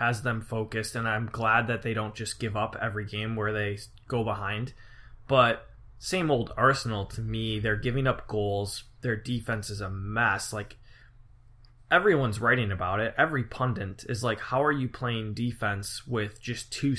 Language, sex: English, male